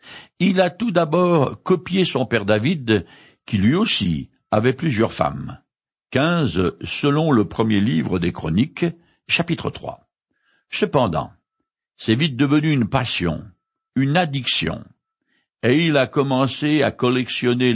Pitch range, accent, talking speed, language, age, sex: 110-170 Hz, French, 125 wpm, French, 60-79, male